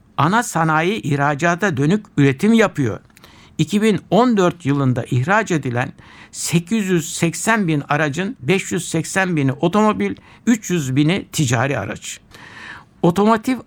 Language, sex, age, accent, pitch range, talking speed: Turkish, male, 60-79, native, 130-180 Hz, 90 wpm